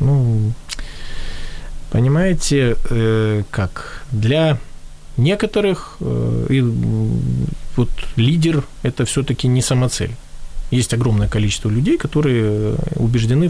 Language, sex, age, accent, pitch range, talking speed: Ukrainian, male, 20-39, native, 110-140 Hz, 90 wpm